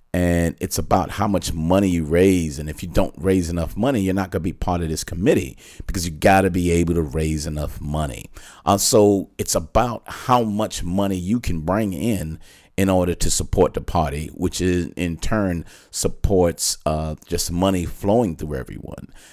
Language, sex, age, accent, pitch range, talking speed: English, male, 40-59, American, 80-95 Hz, 195 wpm